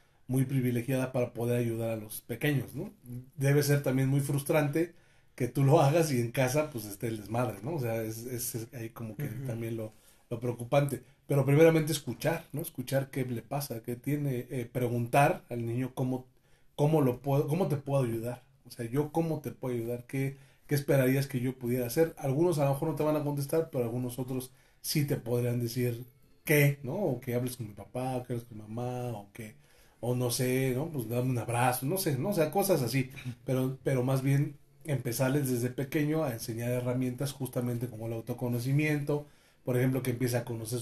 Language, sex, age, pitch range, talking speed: Spanish, male, 30-49, 120-145 Hz, 210 wpm